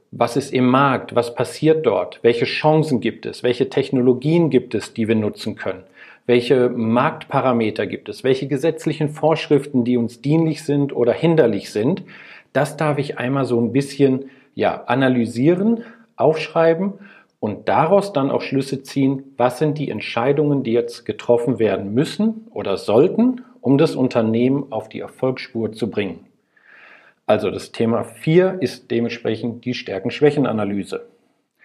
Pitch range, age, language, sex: 125-160 Hz, 40-59, German, male